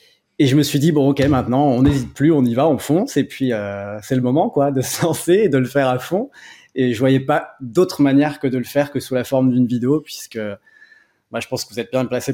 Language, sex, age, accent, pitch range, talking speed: French, male, 20-39, French, 120-140 Hz, 280 wpm